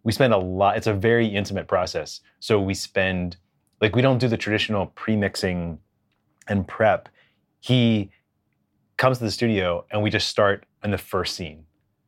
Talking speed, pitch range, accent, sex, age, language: 170 wpm, 100-120 Hz, American, male, 30-49, English